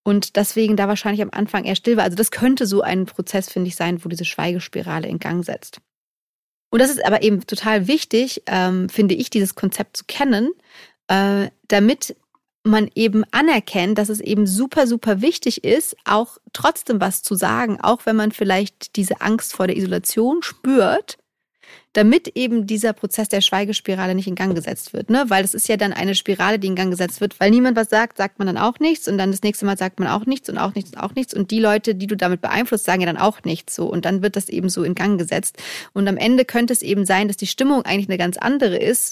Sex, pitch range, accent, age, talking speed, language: female, 195-230 Hz, German, 30-49, 230 wpm, German